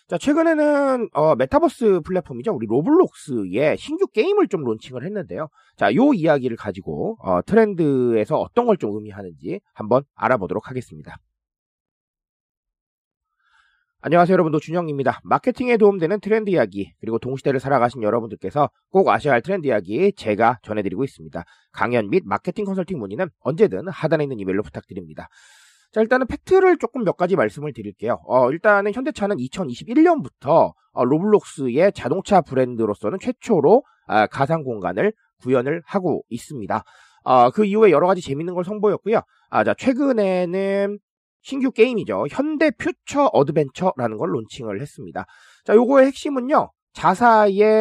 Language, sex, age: Korean, male, 30-49